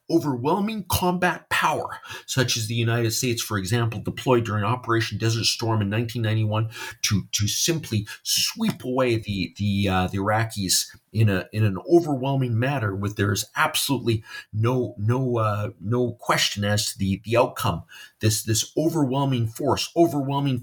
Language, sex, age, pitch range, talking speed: English, male, 40-59, 105-125 Hz, 150 wpm